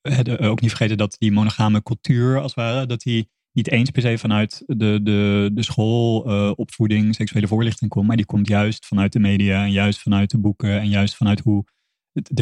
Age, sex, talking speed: 30-49, male, 210 wpm